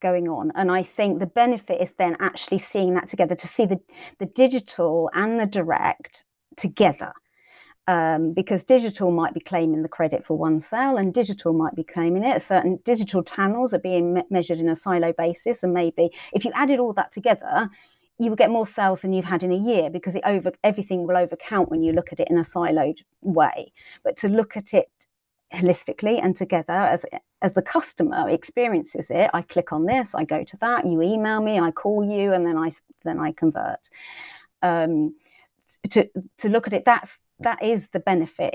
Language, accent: English, British